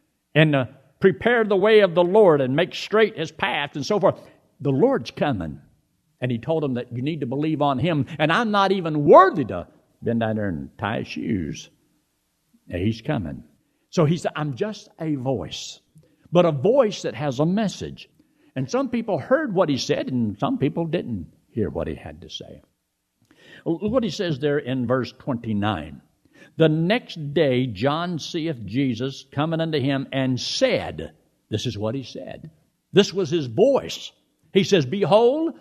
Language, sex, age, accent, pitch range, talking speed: English, male, 60-79, American, 125-175 Hz, 180 wpm